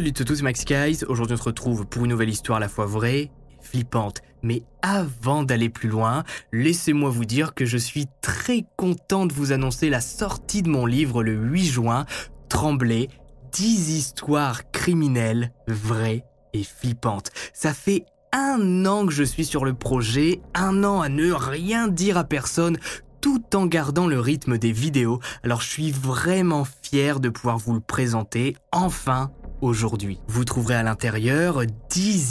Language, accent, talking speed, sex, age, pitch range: French, French, 175 wpm, male, 20-39, 115-160 Hz